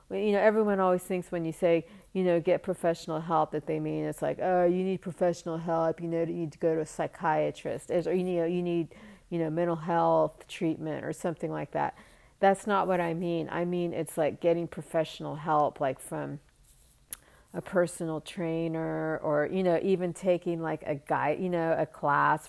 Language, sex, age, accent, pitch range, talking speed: English, female, 40-59, American, 155-175 Hz, 200 wpm